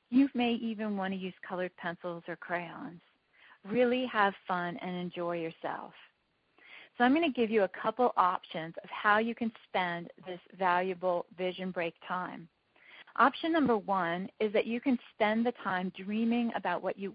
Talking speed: 170 wpm